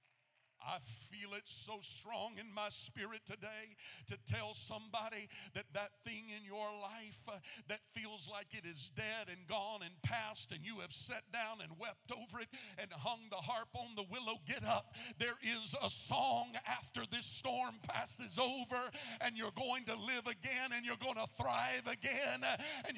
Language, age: English, 50-69